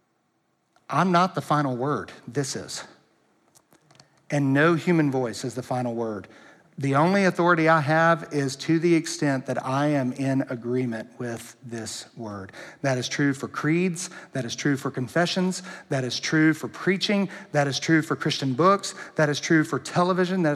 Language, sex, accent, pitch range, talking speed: English, male, American, 125-160 Hz, 170 wpm